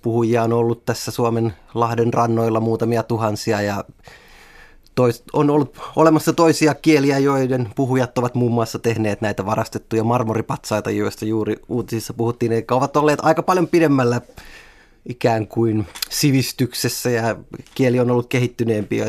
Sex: male